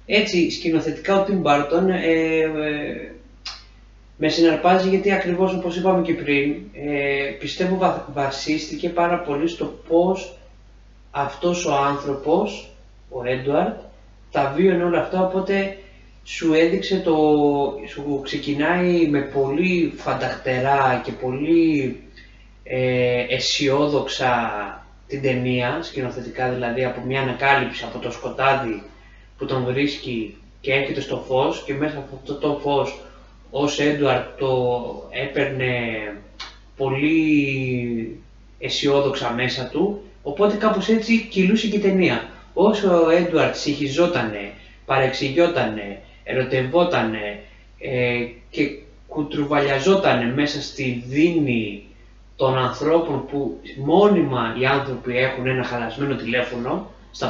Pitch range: 125-165 Hz